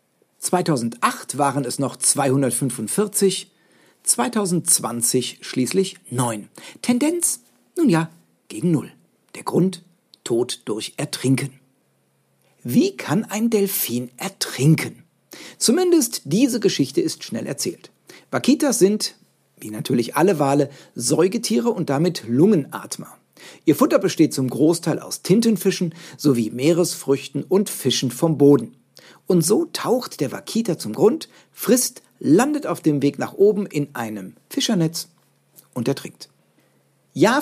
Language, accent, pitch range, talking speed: German, German, 135-200 Hz, 115 wpm